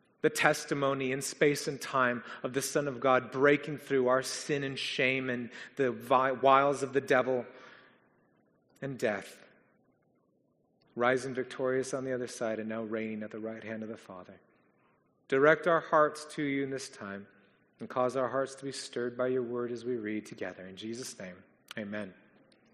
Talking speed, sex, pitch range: 175 wpm, male, 125-165 Hz